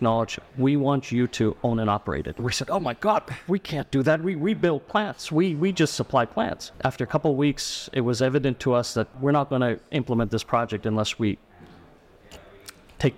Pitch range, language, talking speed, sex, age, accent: 120-155 Hz, English, 215 wpm, male, 40-59, American